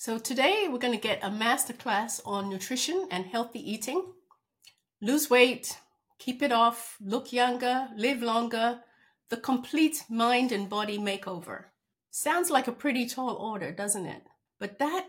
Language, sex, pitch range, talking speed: English, female, 195-250 Hz, 150 wpm